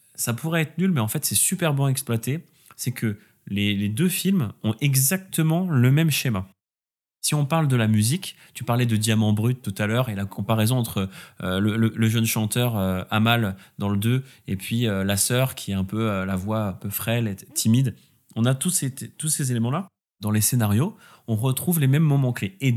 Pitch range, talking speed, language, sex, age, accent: 105-150 Hz, 230 wpm, French, male, 20-39, French